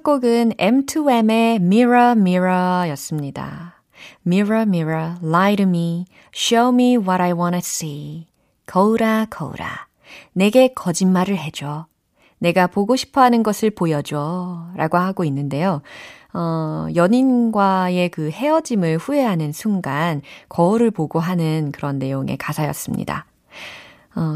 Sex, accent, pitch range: female, native, 160-245 Hz